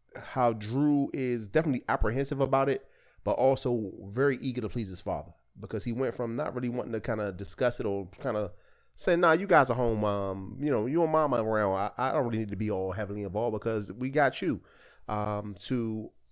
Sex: male